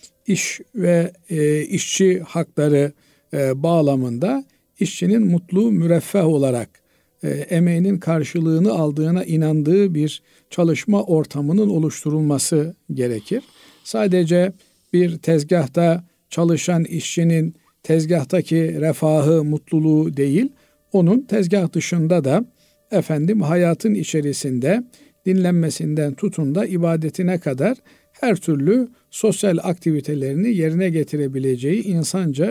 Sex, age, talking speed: male, 50-69, 90 wpm